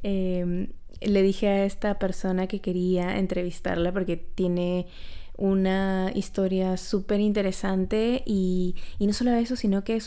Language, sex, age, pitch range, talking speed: Spanish, female, 20-39, 185-205 Hz, 135 wpm